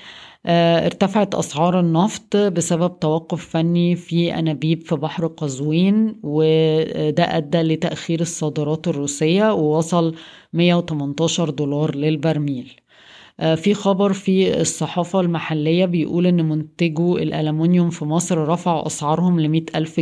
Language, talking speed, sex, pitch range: Arabic, 105 wpm, female, 155-175 Hz